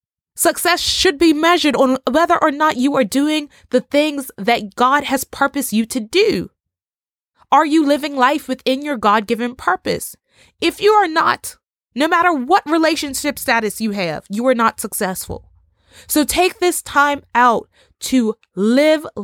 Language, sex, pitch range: English, female, 225-335 Hz